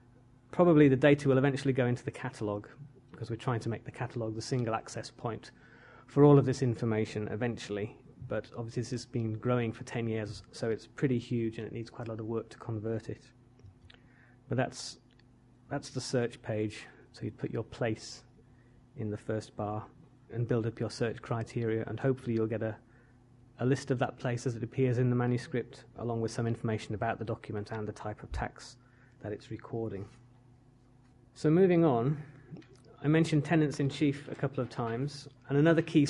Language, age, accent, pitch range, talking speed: English, 30-49, British, 115-135 Hz, 195 wpm